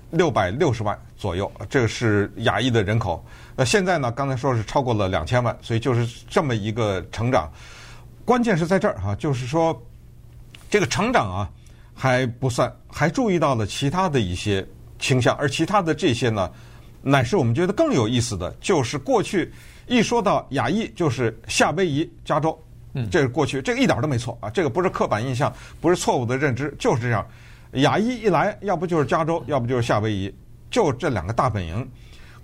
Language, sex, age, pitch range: Chinese, male, 50-69, 115-165 Hz